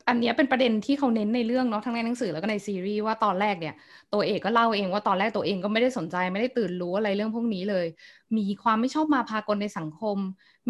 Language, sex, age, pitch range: Thai, female, 20-39, 190-245 Hz